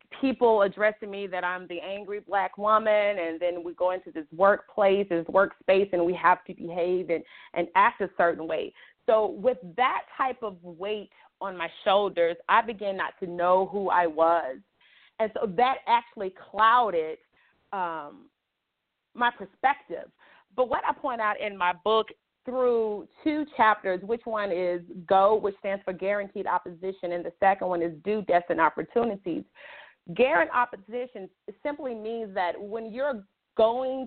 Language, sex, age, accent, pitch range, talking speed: English, female, 30-49, American, 180-235 Hz, 160 wpm